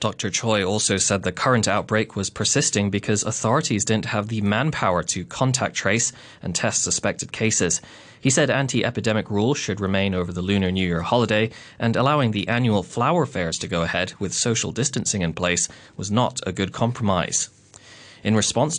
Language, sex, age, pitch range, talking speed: English, male, 20-39, 95-120 Hz, 175 wpm